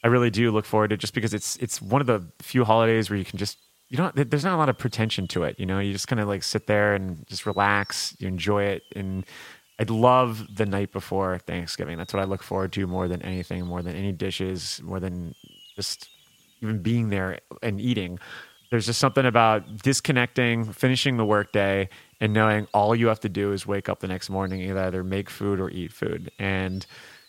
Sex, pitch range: male, 95-120 Hz